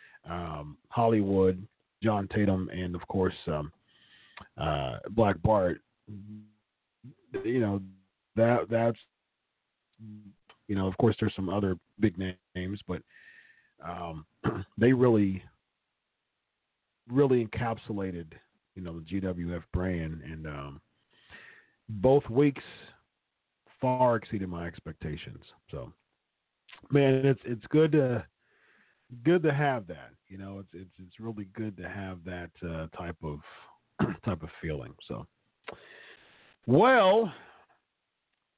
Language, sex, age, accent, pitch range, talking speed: English, male, 40-59, American, 85-120 Hz, 110 wpm